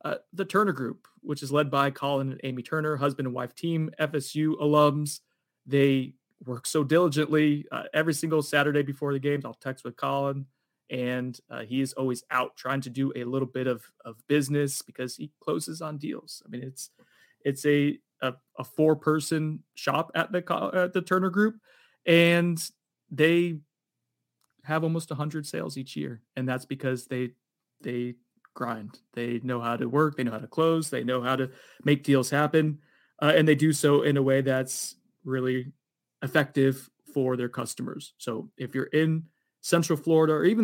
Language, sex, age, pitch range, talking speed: English, male, 30-49, 130-160 Hz, 185 wpm